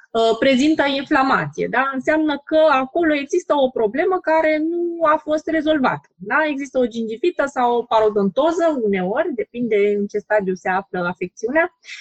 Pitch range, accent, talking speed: 225-310 Hz, native, 145 wpm